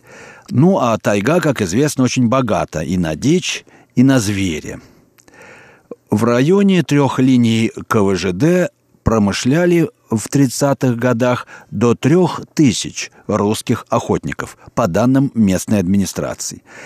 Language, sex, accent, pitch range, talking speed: Russian, male, native, 110-140 Hz, 110 wpm